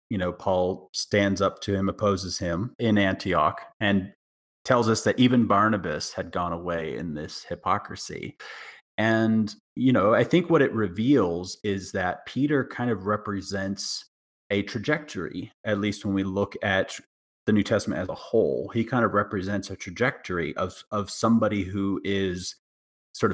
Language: English